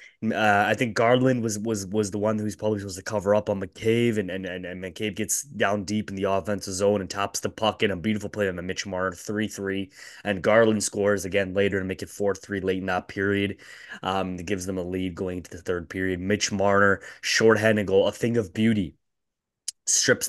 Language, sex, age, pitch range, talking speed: English, male, 20-39, 95-110 Hz, 220 wpm